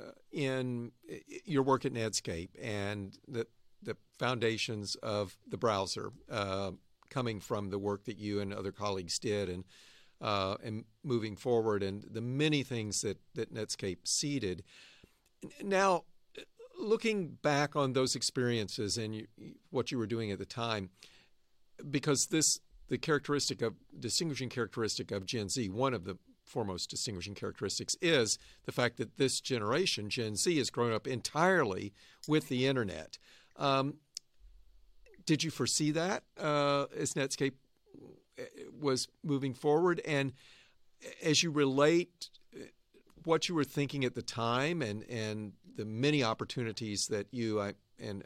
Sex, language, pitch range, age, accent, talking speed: male, English, 105-140 Hz, 50-69, American, 140 wpm